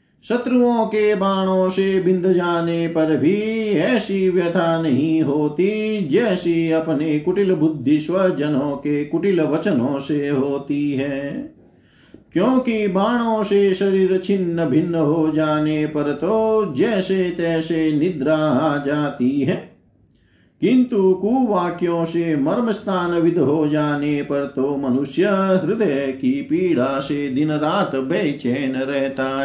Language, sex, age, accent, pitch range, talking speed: Hindi, male, 50-69, native, 140-190 Hz, 115 wpm